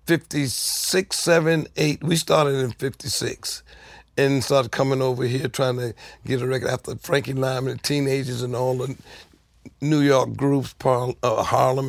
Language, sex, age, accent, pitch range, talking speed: English, male, 60-79, American, 125-145 Hz, 145 wpm